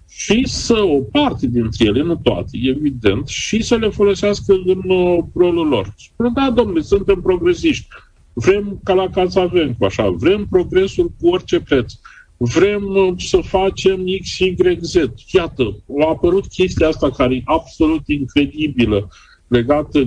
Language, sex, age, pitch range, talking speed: Romanian, male, 50-69, 125-190 Hz, 140 wpm